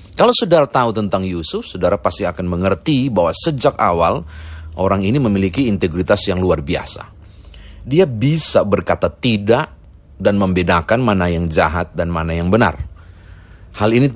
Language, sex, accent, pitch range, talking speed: Indonesian, male, native, 90-125 Hz, 145 wpm